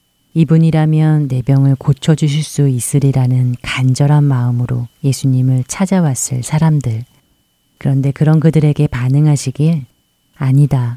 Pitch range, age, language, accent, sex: 125-150 Hz, 30-49, Korean, native, female